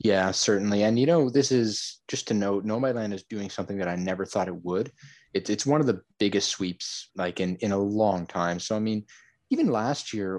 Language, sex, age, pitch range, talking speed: English, male, 20-39, 90-110 Hz, 235 wpm